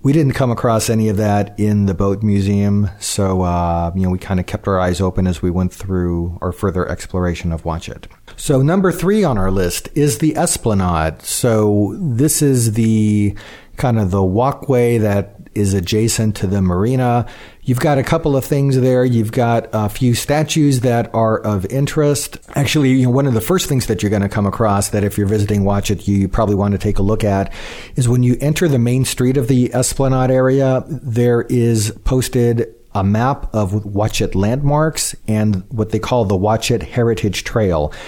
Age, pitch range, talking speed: 40-59, 95-125 Hz, 200 wpm